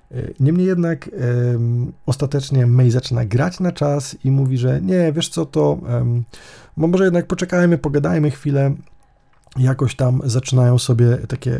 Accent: native